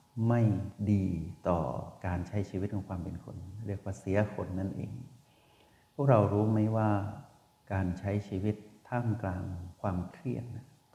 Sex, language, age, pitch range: male, Thai, 60-79, 100-125 Hz